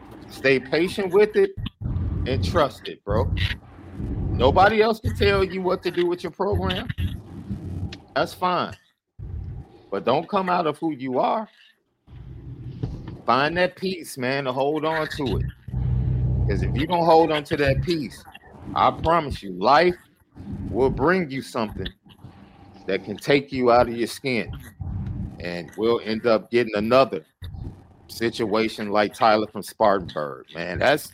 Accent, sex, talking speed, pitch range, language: American, male, 145 wpm, 100-150 Hz, English